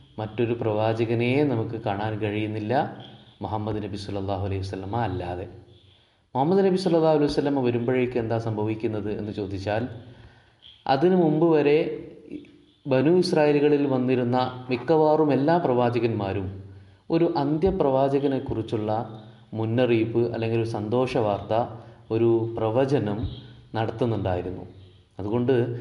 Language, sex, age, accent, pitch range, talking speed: Malayalam, male, 30-49, native, 110-145 Hz, 85 wpm